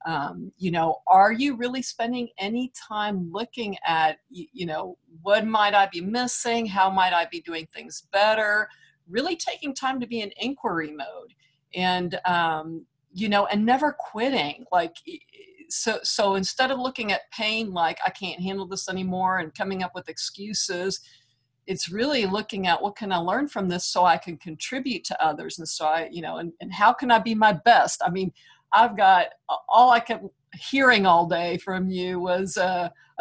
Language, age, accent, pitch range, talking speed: English, 50-69, American, 175-225 Hz, 185 wpm